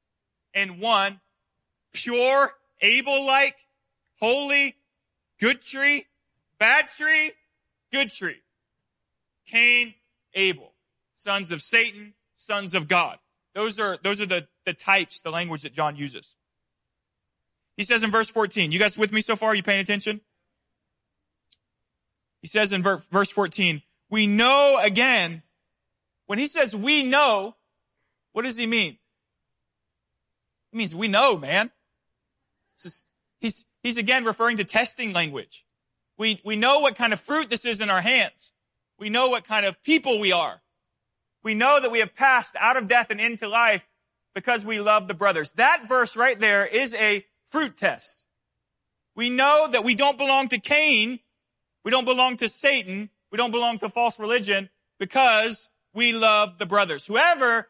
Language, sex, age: English, male, 30-49